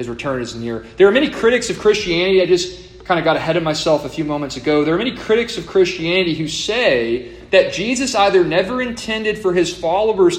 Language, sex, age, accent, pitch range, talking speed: English, male, 30-49, American, 145-200 Hz, 220 wpm